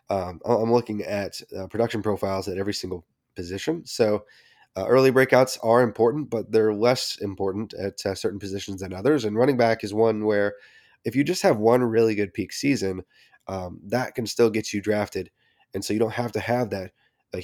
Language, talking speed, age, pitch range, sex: English, 200 wpm, 20-39, 100-120 Hz, male